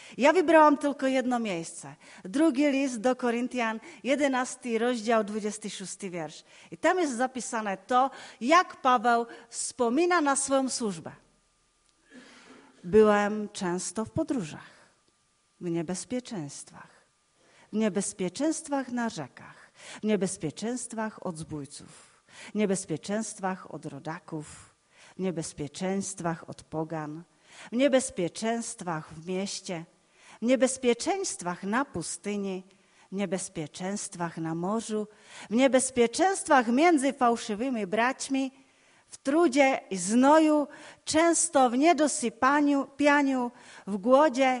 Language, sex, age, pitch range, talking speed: Czech, female, 40-59, 185-260 Hz, 100 wpm